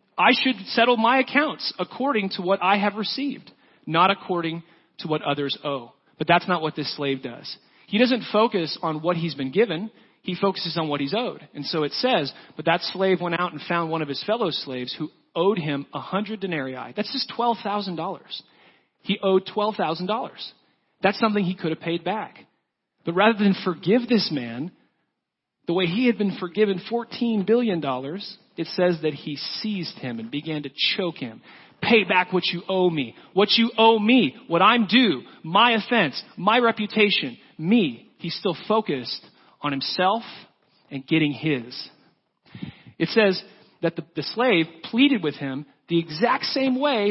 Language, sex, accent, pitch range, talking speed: English, male, American, 150-215 Hz, 180 wpm